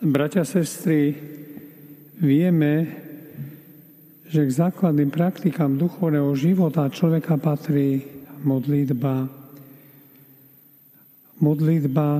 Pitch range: 140-155 Hz